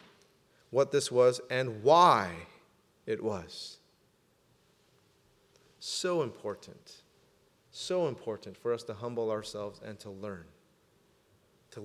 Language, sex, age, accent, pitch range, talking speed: English, male, 30-49, American, 115-165 Hz, 100 wpm